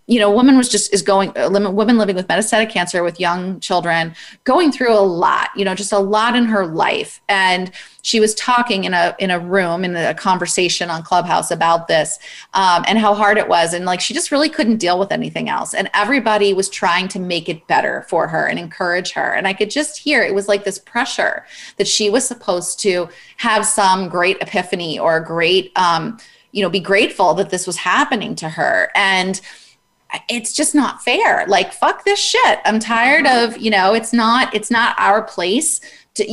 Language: English